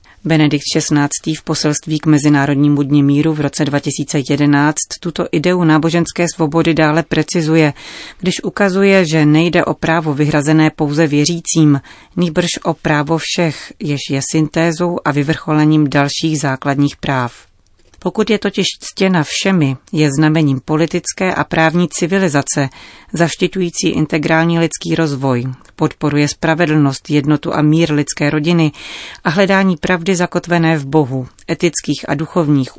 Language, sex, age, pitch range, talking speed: Czech, female, 30-49, 145-170 Hz, 125 wpm